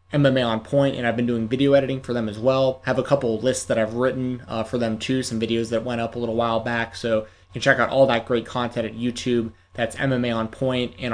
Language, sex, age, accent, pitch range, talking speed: English, male, 20-39, American, 110-125 Hz, 275 wpm